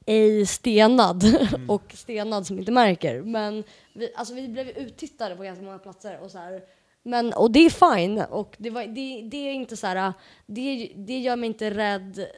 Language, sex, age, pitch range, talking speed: Swedish, female, 20-39, 190-225 Hz, 195 wpm